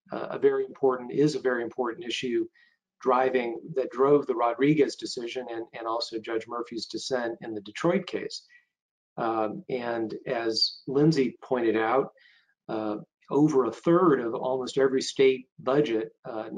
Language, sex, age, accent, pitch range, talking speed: English, male, 40-59, American, 115-150 Hz, 145 wpm